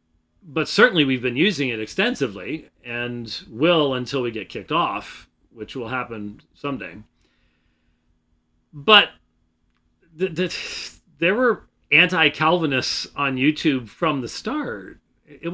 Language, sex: English, male